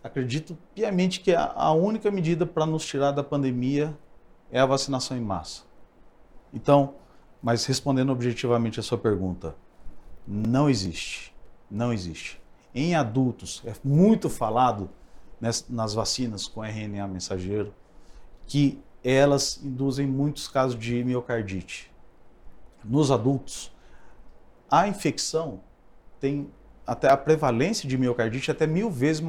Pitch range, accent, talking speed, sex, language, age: 110-150 Hz, Brazilian, 115 wpm, male, Portuguese, 40-59